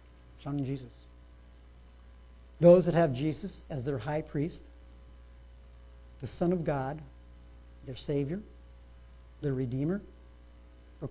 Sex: male